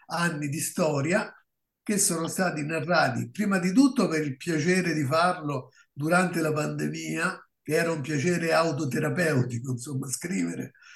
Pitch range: 145-185 Hz